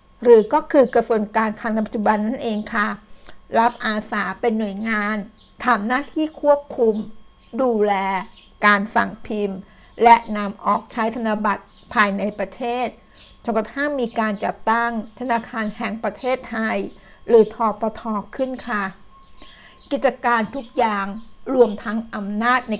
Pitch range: 215-245 Hz